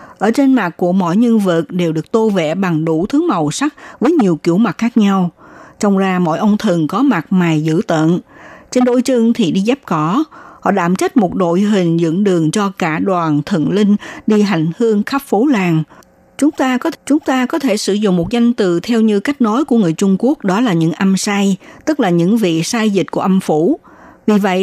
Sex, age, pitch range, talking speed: female, 60-79, 175-245 Hz, 230 wpm